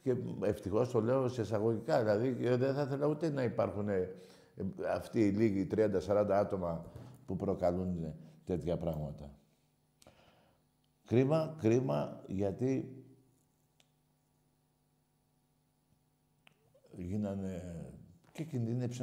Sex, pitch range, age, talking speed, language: male, 105-150 Hz, 60-79, 90 wpm, Greek